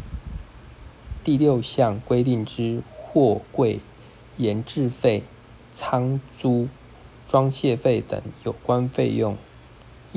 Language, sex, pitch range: Chinese, male, 100-130 Hz